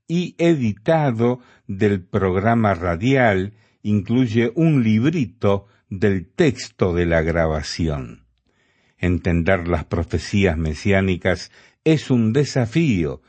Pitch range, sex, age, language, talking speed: 95-125 Hz, male, 50-69, Spanish, 90 wpm